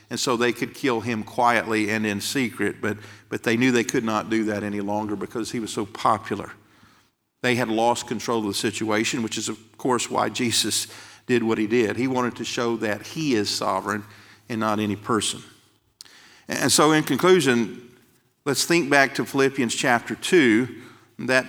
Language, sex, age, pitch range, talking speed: English, male, 50-69, 115-130 Hz, 185 wpm